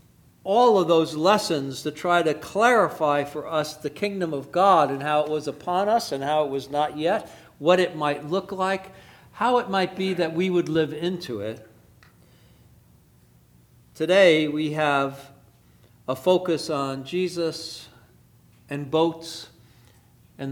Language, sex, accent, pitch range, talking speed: English, male, American, 120-170 Hz, 150 wpm